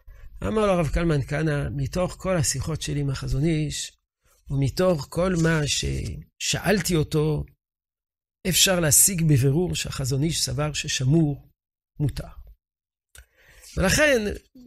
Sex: male